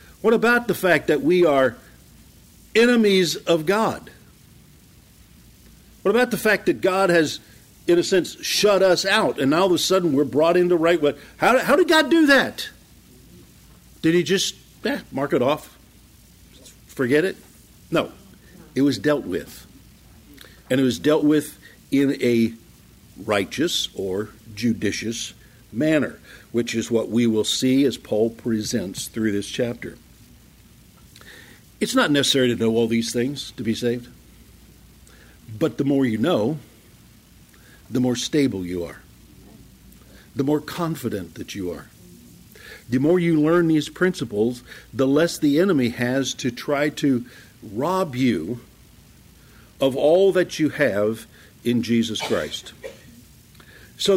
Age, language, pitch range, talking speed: 60-79, English, 115-170 Hz, 145 wpm